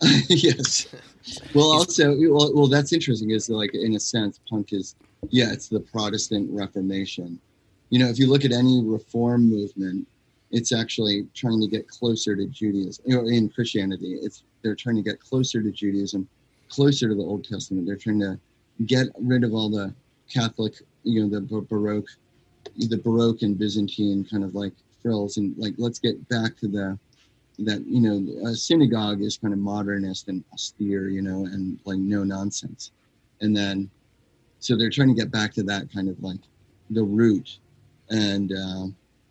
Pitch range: 100-120 Hz